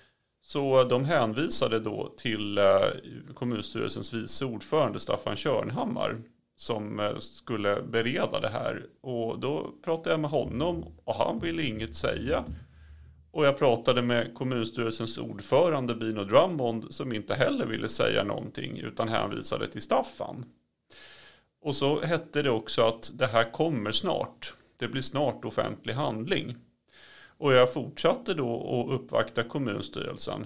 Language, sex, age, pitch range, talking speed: Swedish, male, 30-49, 110-135 Hz, 130 wpm